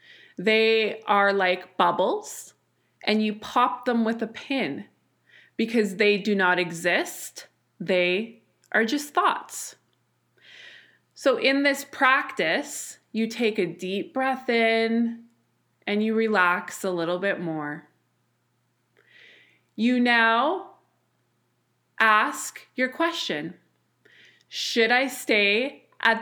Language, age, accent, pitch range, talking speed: English, 20-39, American, 210-265 Hz, 105 wpm